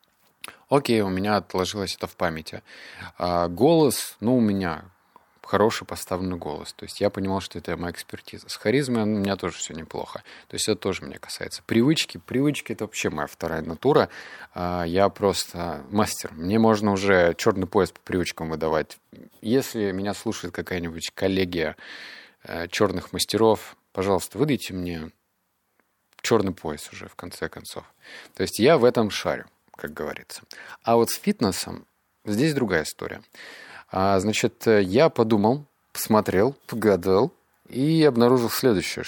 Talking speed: 145 wpm